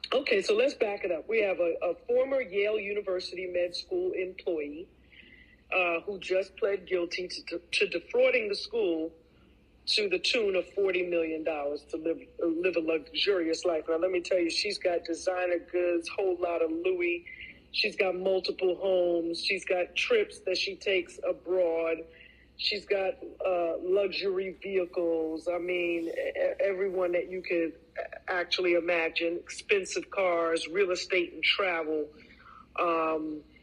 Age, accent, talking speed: 40-59, American, 150 wpm